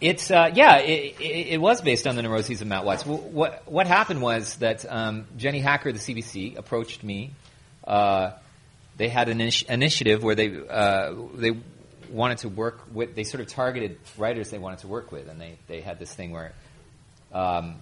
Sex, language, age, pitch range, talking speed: male, English, 30-49, 100-130 Hz, 200 wpm